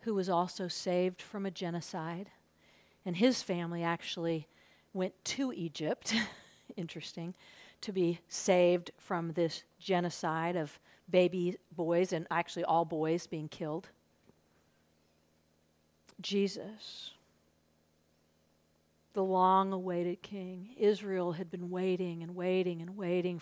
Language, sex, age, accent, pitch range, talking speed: English, female, 50-69, American, 155-190 Hz, 110 wpm